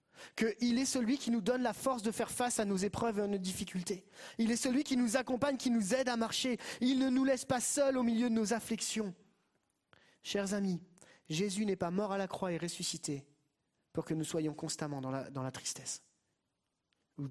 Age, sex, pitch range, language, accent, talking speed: 30-49, male, 155-225 Hz, French, French, 210 wpm